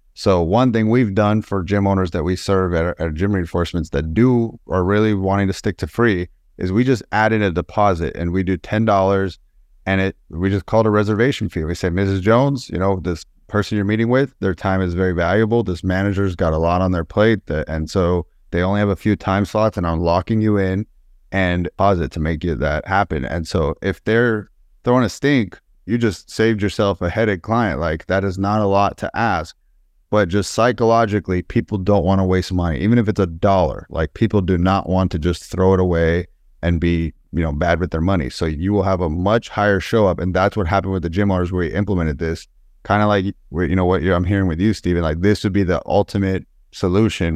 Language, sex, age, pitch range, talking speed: English, male, 30-49, 85-105 Hz, 235 wpm